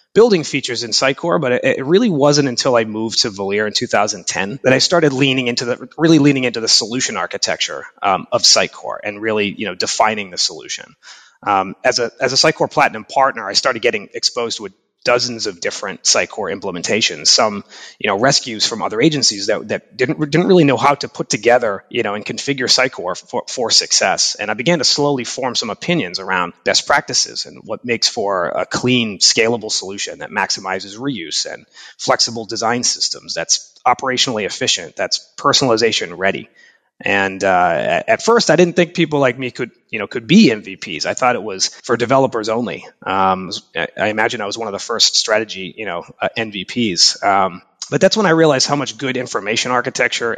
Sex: male